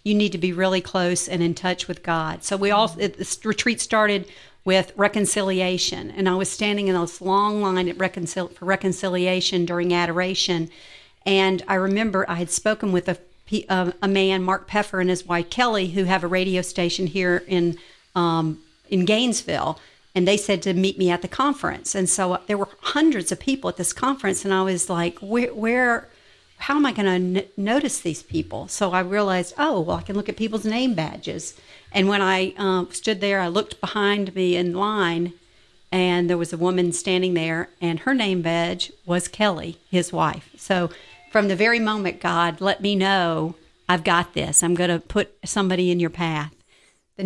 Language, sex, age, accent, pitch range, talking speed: English, female, 50-69, American, 175-200 Hz, 195 wpm